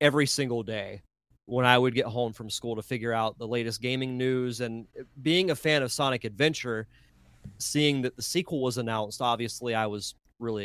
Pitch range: 115-145 Hz